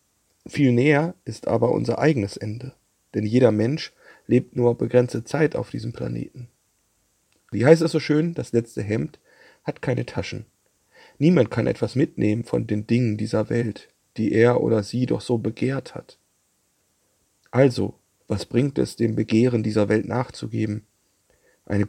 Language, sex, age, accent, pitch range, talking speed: German, male, 40-59, German, 105-130 Hz, 150 wpm